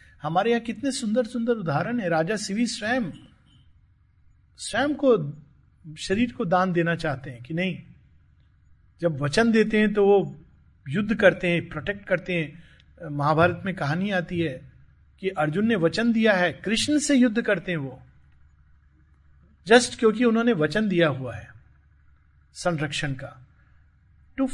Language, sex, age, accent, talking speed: Hindi, male, 50-69, native, 145 wpm